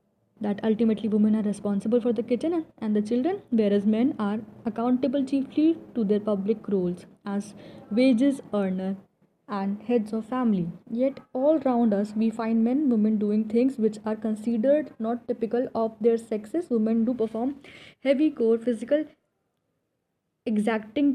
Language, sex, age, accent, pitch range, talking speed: English, female, 10-29, Indian, 210-250 Hz, 150 wpm